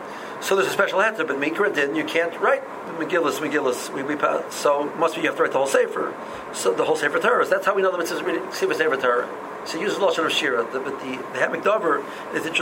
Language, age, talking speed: English, 50-69, 235 wpm